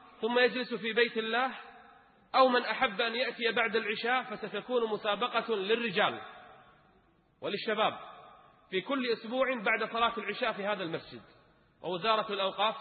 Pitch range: 195-230 Hz